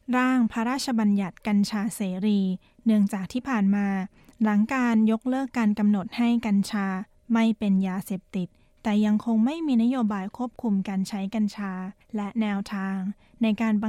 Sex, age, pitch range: female, 20-39, 200-230 Hz